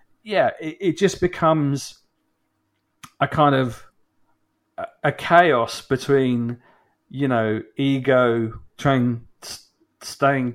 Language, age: English, 40-59